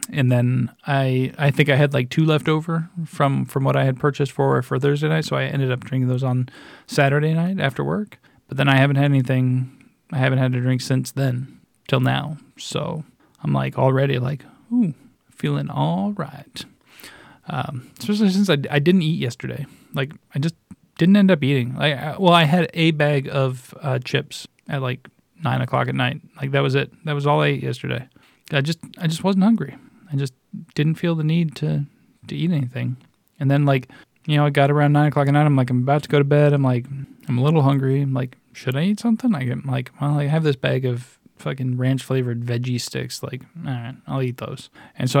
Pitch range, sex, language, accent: 130-160 Hz, male, English, American